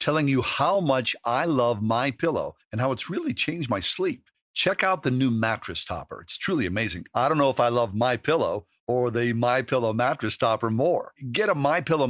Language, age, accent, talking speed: English, 50-69, American, 215 wpm